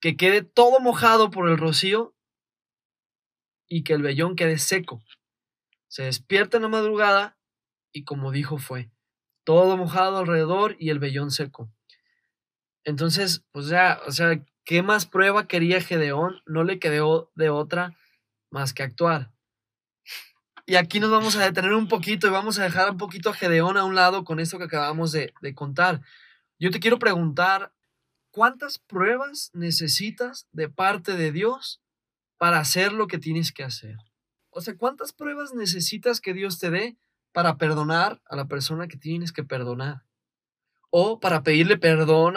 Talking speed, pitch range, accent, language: 160 wpm, 145-195 Hz, Mexican, Spanish